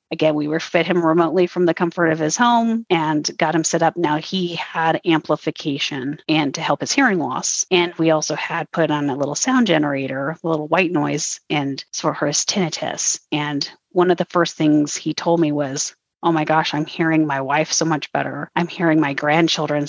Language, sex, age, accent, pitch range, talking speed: English, female, 30-49, American, 150-175 Hz, 210 wpm